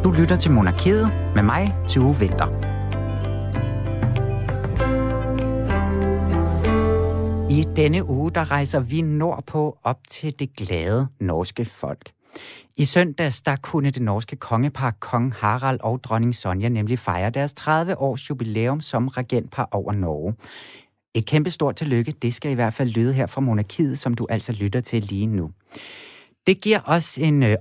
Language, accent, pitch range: Danish, native, 105-150 Hz